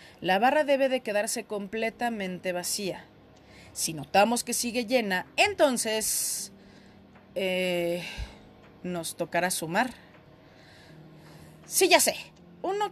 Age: 30-49